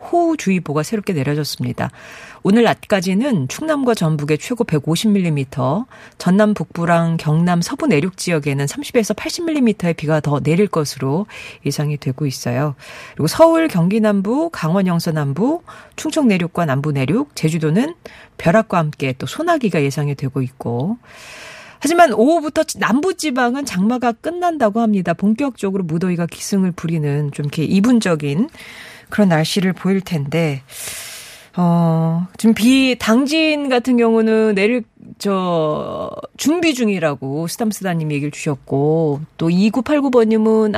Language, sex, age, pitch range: Korean, female, 40-59, 160-240 Hz